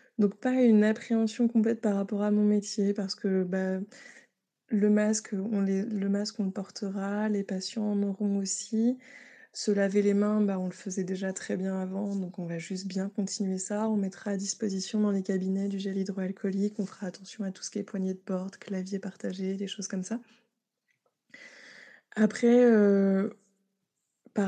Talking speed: 185 wpm